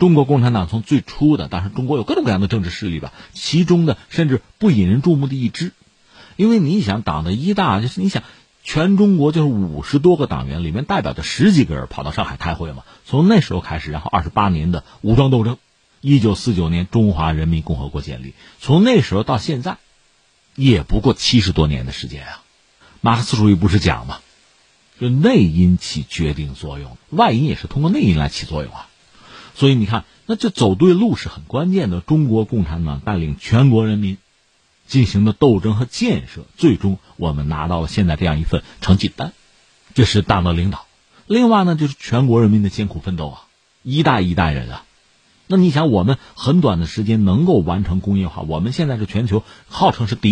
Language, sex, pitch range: Chinese, male, 90-145 Hz